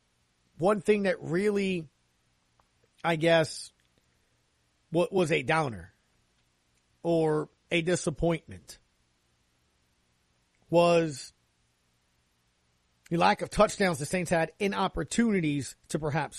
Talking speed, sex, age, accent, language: 90 wpm, male, 40-59, American, English